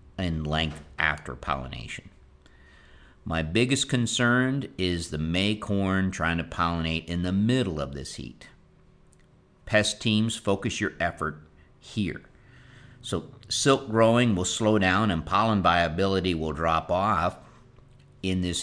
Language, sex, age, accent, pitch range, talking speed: English, male, 50-69, American, 80-110 Hz, 125 wpm